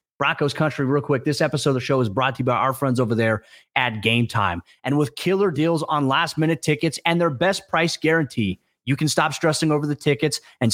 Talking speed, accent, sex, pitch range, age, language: 235 wpm, American, male, 130-155 Hz, 30-49, English